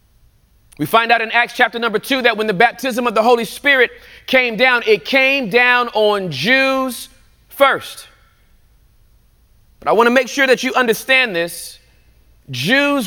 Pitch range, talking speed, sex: 185-265 Hz, 160 wpm, male